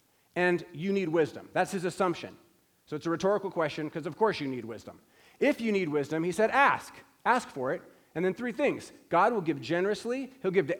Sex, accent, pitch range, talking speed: male, American, 145-190 Hz, 215 wpm